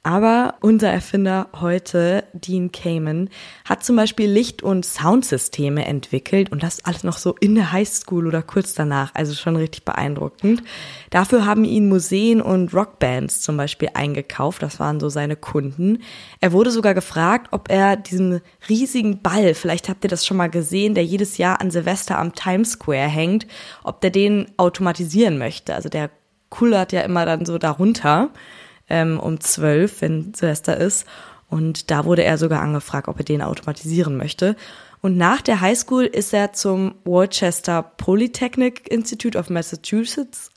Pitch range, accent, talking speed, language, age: 170-220 Hz, German, 160 wpm, German, 20-39